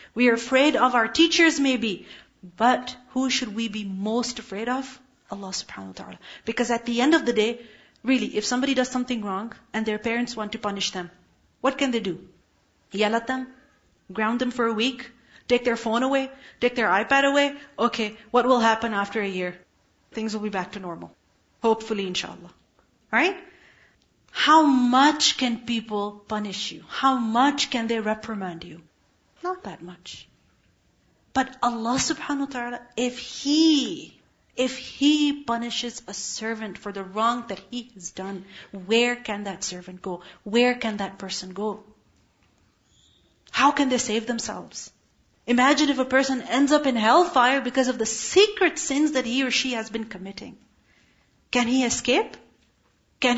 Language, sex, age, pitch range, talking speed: English, female, 40-59, 210-265 Hz, 165 wpm